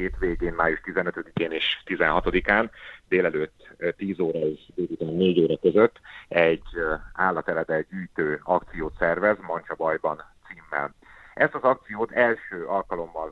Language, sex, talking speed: Hungarian, male, 115 wpm